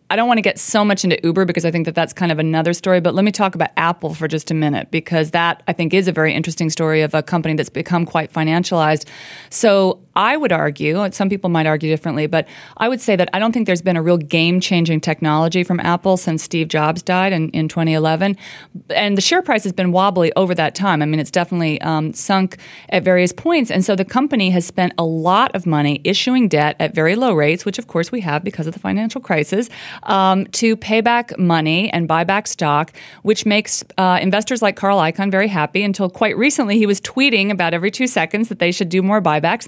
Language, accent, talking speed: English, American, 235 wpm